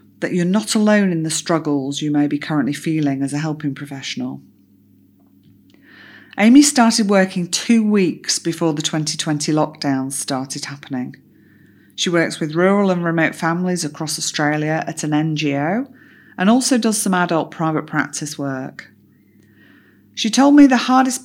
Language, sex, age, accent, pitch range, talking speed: English, female, 40-59, British, 140-190 Hz, 145 wpm